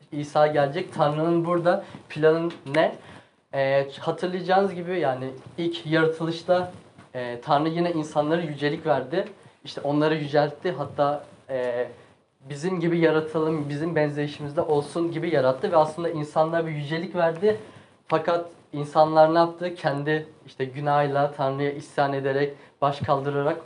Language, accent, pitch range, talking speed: Turkish, native, 145-170 Hz, 120 wpm